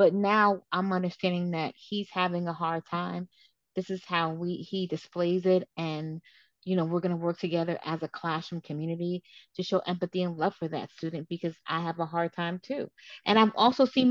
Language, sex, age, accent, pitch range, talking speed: English, female, 20-39, American, 170-210 Hz, 205 wpm